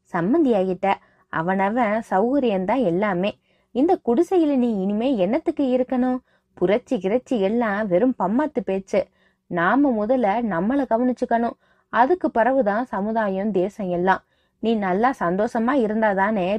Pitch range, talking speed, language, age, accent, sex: 185-255 Hz, 40 wpm, Tamil, 20-39, native, female